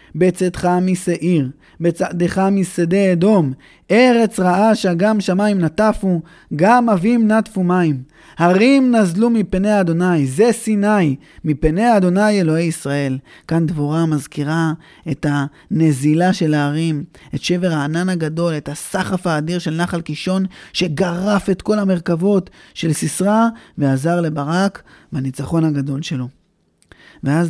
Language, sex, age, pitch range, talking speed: Hebrew, male, 20-39, 160-200 Hz, 115 wpm